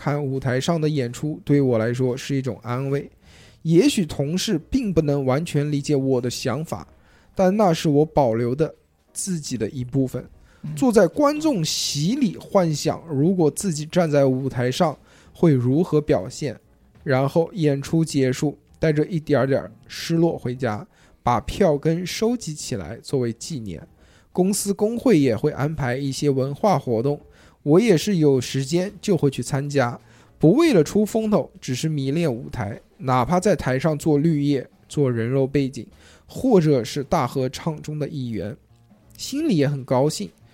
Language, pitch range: Chinese, 130-170 Hz